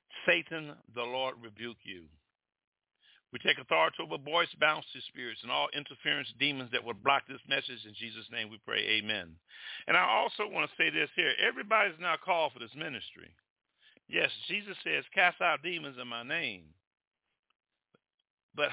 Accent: American